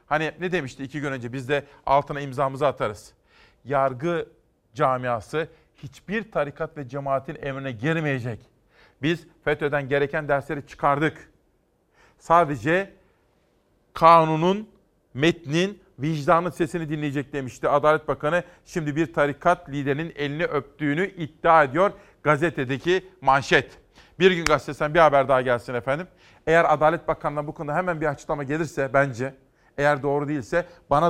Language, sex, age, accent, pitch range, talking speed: Turkish, male, 40-59, native, 140-165 Hz, 125 wpm